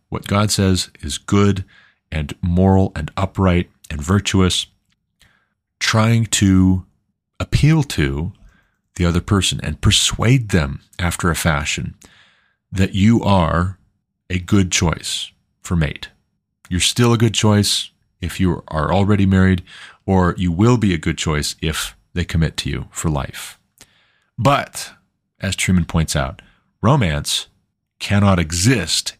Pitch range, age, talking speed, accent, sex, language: 85-100 Hz, 30-49, 130 wpm, American, male, English